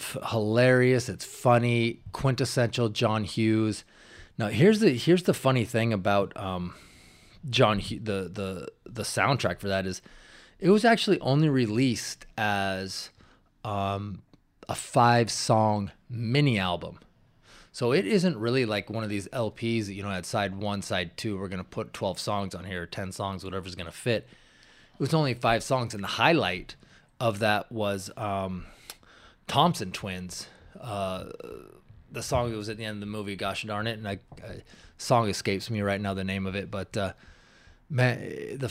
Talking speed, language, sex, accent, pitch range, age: 165 wpm, English, male, American, 95-125 Hz, 20-39